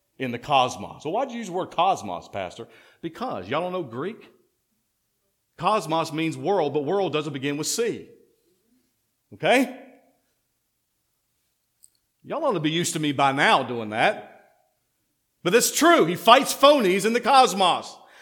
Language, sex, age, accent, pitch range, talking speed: English, male, 50-69, American, 195-260 Hz, 155 wpm